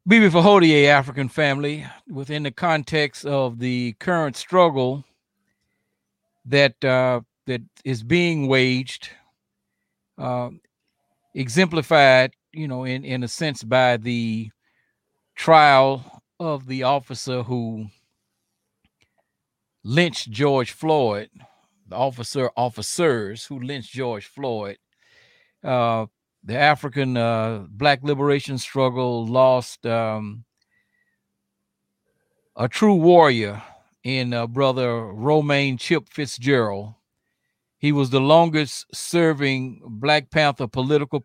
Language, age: English, 50-69